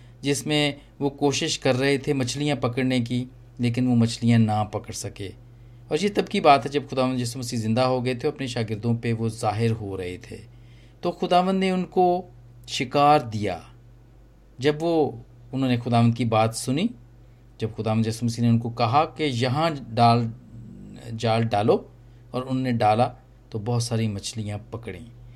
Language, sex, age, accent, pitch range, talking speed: English, male, 40-59, Indian, 120-155 Hz, 150 wpm